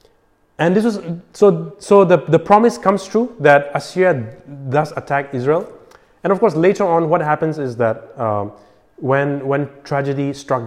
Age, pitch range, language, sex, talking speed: 30-49, 110-145 Hz, English, male, 165 wpm